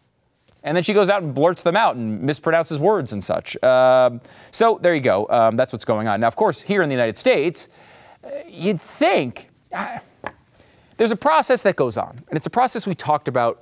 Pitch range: 125-190 Hz